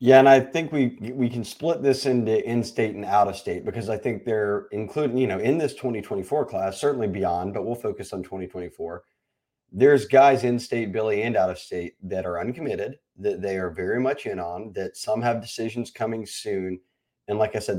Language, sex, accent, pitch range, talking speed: English, male, American, 100-130 Hz, 190 wpm